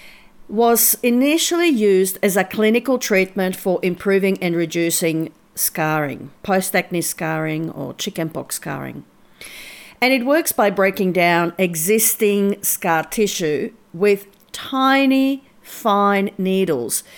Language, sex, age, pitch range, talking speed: English, female, 50-69, 180-225 Hz, 105 wpm